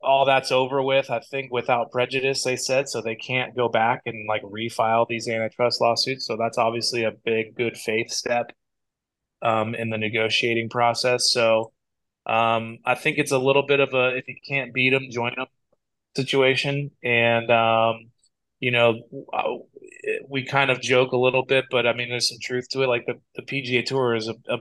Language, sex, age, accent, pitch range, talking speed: English, male, 20-39, American, 115-130 Hz, 180 wpm